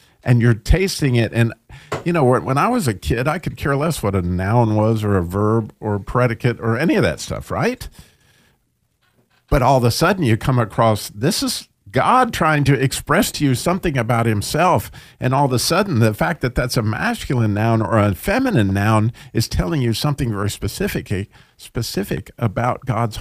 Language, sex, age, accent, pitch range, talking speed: English, male, 50-69, American, 110-150 Hz, 195 wpm